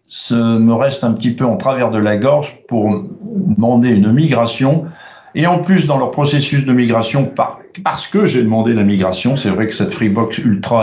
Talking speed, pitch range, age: 195 wpm, 120-165 Hz, 60-79